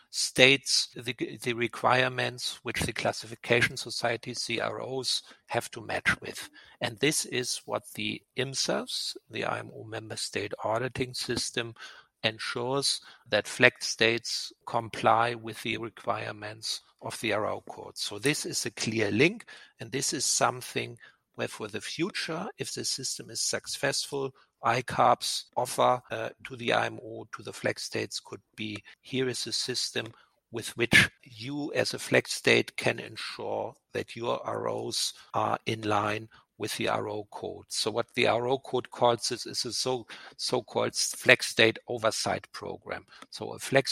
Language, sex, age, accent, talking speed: English, male, 50-69, German, 150 wpm